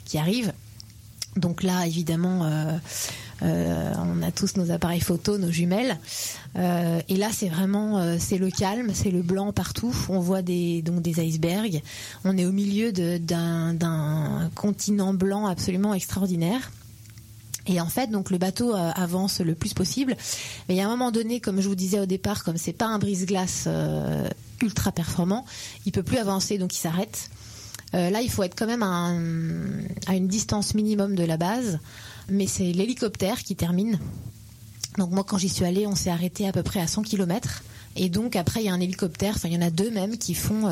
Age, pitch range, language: 20-39, 165-200 Hz, French